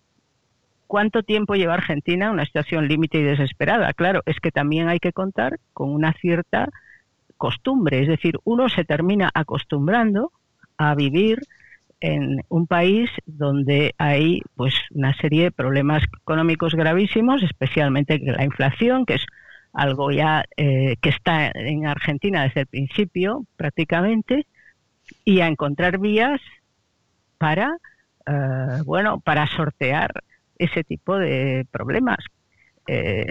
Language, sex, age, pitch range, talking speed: Spanish, female, 50-69, 145-190 Hz, 125 wpm